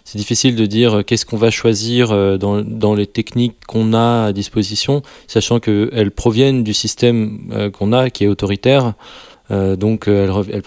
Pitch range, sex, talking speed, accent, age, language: 100-115 Hz, male, 150 wpm, French, 20-39, French